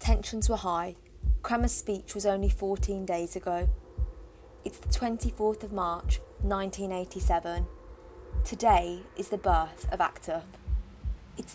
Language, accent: English, British